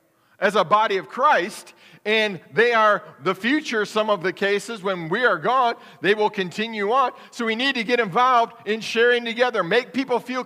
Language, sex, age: English, male, 40-59